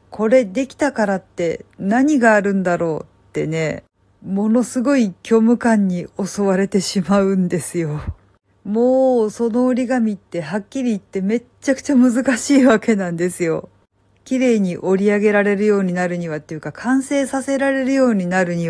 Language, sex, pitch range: Japanese, female, 180-245 Hz